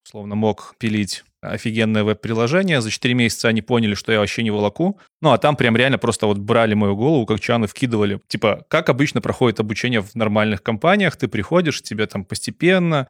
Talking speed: 190 wpm